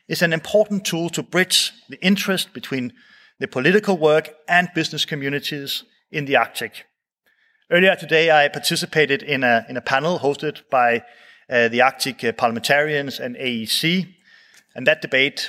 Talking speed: 145 wpm